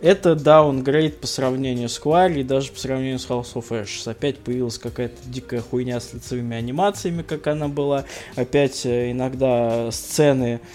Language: Russian